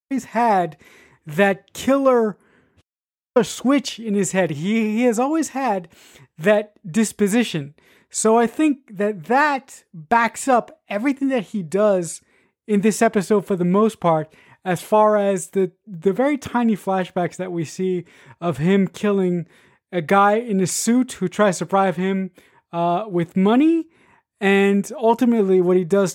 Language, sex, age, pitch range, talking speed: English, male, 20-39, 180-230 Hz, 145 wpm